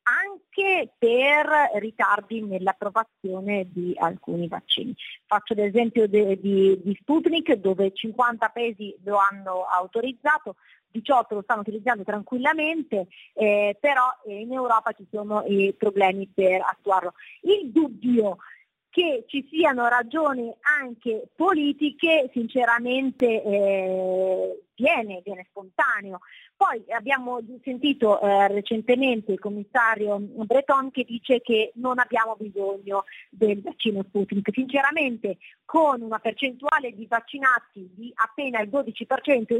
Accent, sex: native, female